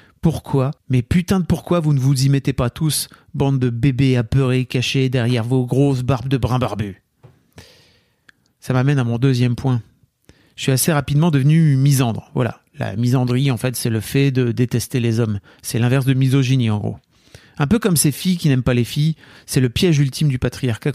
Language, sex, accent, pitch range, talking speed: French, male, French, 120-145 Hz, 200 wpm